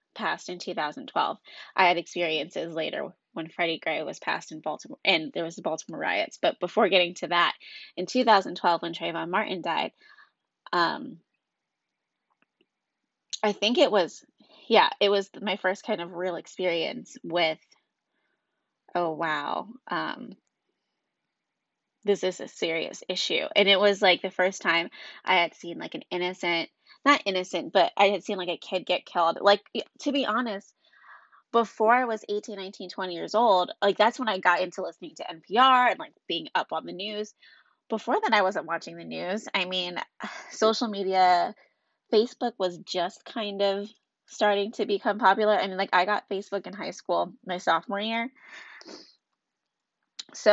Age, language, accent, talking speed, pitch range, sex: 20-39, English, American, 165 wpm, 175-215 Hz, female